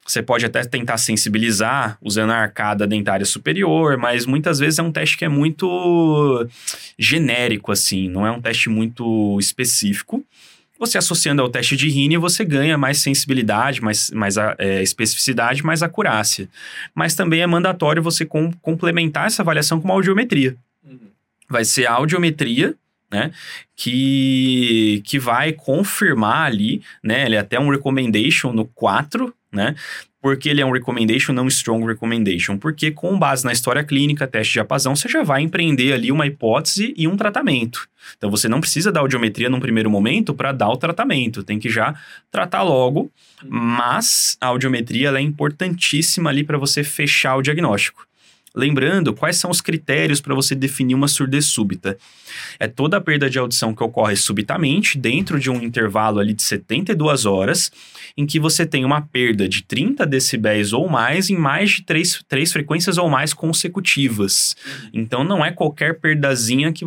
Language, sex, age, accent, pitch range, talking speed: Portuguese, male, 10-29, Brazilian, 115-160 Hz, 165 wpm